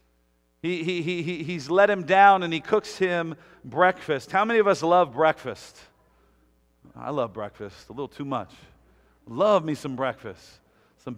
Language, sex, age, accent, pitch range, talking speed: English, male, 50-69, American, 145-190 Hz, 160 wpm